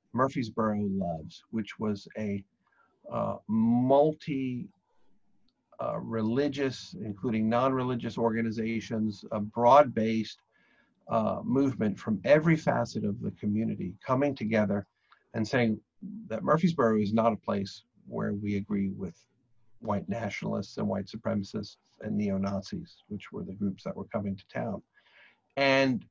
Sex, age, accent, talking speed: male, 50-69, American, 130 wpm